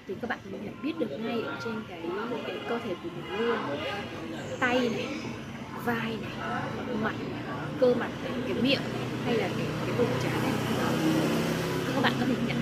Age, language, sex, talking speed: 20-39, Vietnamese, female, 185 wpm